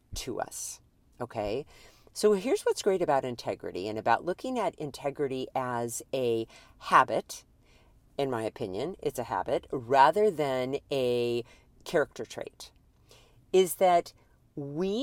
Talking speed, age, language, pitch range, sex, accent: 125 wpm, 50-69, English, 125-210 Hz, female, American